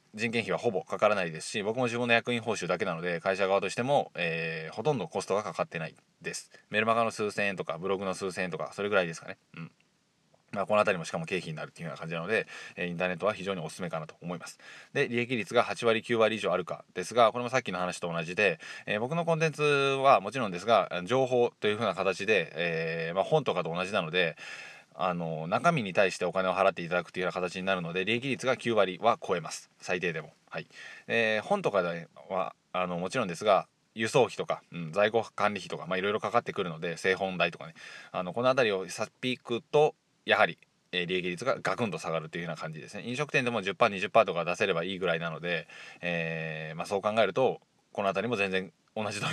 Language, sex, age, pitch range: Japanese, male, 20-39, 90-120 Hz